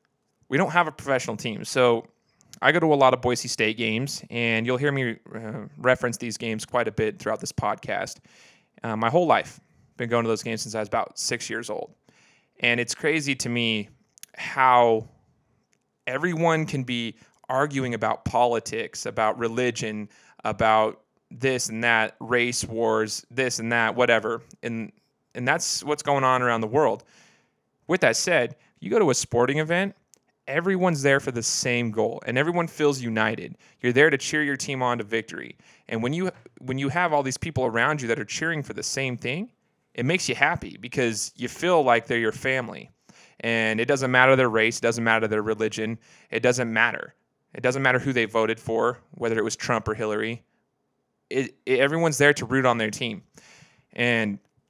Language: English